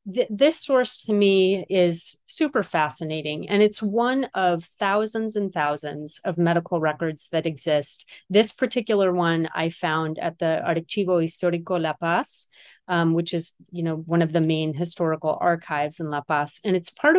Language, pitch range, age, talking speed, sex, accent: English, 165-195 Hz, 30-49, 165 wpm, female, American